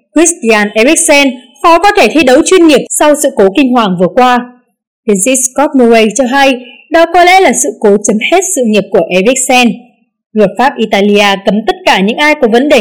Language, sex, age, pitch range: Vietnamese, female, 20-39, 210-295 Hz